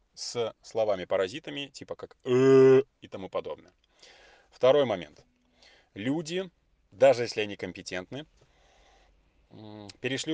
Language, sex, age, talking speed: Russian, male, 30-49, 95 wpm